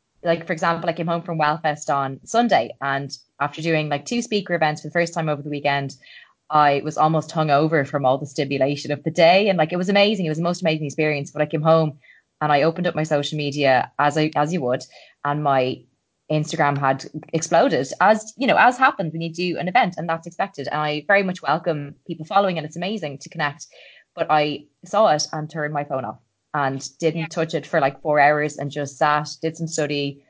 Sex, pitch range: female, 140-165 Hz